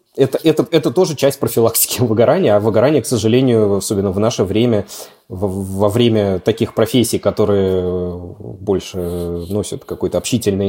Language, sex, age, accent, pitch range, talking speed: Russian, male, 20-39, native, 95-120 Hz, 135 wpm